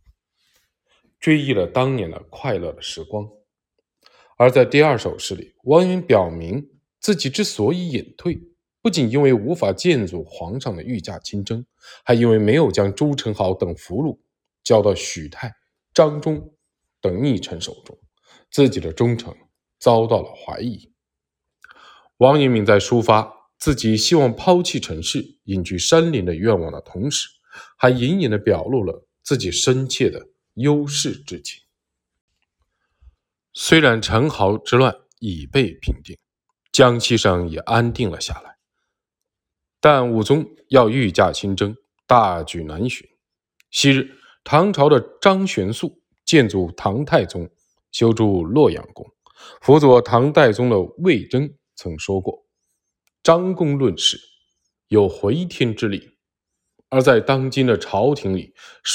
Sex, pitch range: male, 100-145 Hz